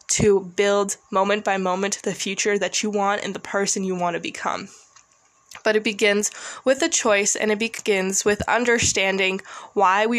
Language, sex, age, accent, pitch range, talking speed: English, female, 10-29, American, 195-230 Hz, 175 wpm